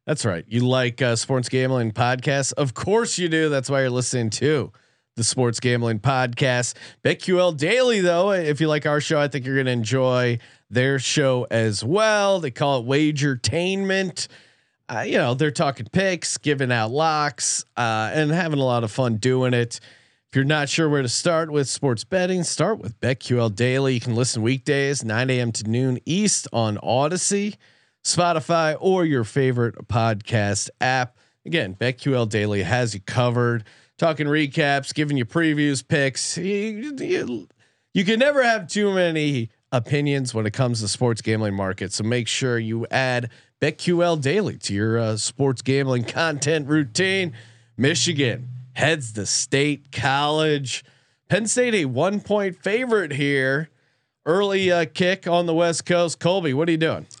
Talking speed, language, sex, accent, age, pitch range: 165 wpm, English, male, American, 30-49, 120-160 Hz